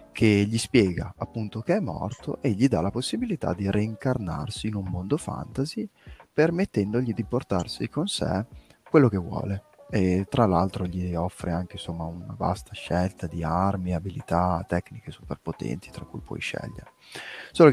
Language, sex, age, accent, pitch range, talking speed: Italian, male, 20-39, native, 90-120 Hz, 160 wpm